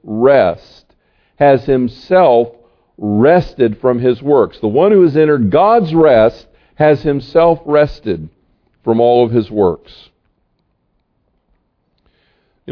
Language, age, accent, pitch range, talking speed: English, 50-69, American, 105-150 Hz, 110 wpm